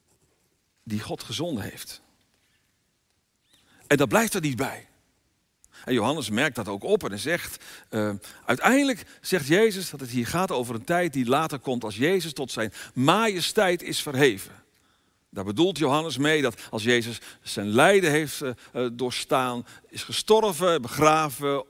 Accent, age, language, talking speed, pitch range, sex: Dutch, 50-69, Dutch, 150 wpm, 110-160 Hz, male